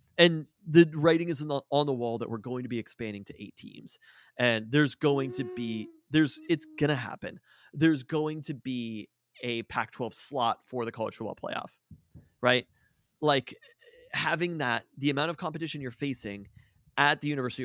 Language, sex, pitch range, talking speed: English, male, 120-155 Hz, 180 wpm